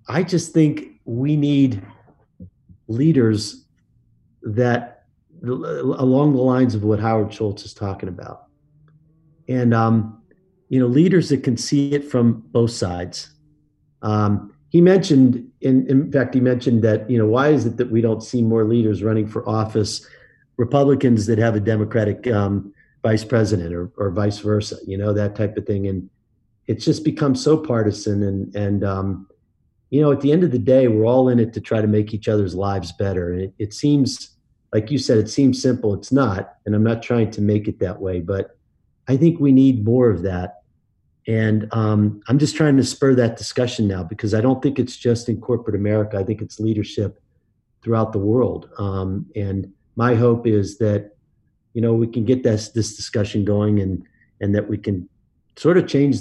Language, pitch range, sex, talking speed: English, 105-130 Hz, male, 190 wpm